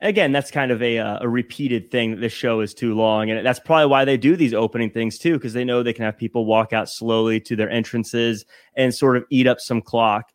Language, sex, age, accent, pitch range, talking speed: English, male, 30-49, American, 115-145 Hz, 260 wpm